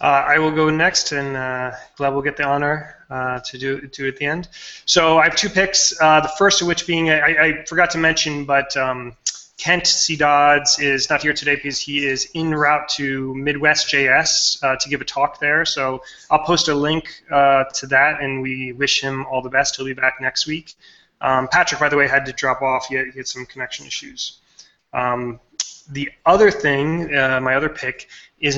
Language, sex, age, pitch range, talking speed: English, male, 20-39, 135-155 Hz, 215 wpm